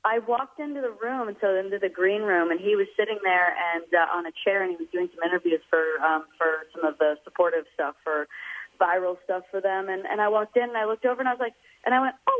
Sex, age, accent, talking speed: female, 30-49, American, 275 wpm